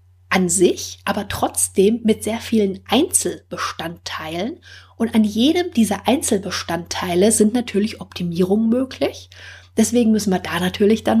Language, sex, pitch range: German, female, 180-220 Hz